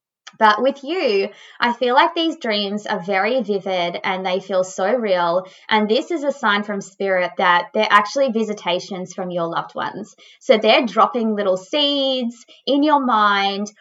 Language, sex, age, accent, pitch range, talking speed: English, female, 20-39, Australian, 190-255 Hz, 170 wpm